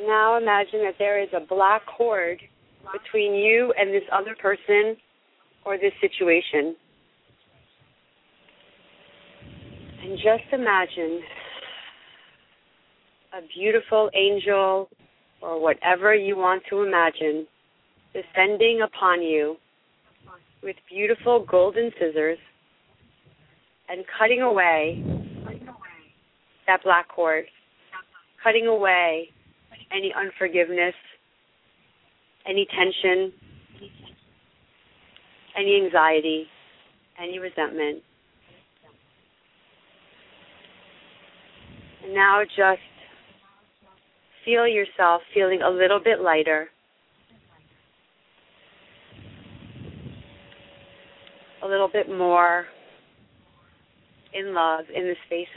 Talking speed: 75 wpm